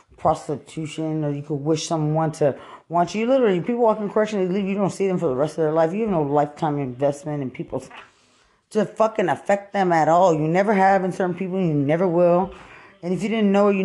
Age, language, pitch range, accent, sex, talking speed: 20-39, English, 150-190 Hz, American, female, 235 wpm